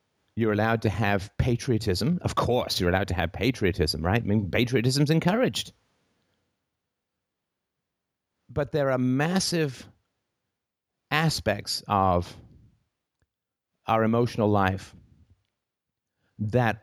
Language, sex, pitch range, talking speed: English, male, 100-130 Hz, 100 wpm